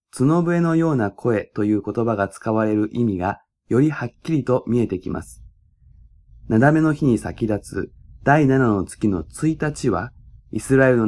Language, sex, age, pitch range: Japanese, male, 20-39, 105-135 Hz